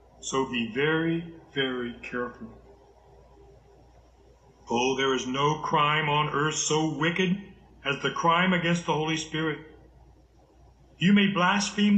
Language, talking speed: English, 120 wpm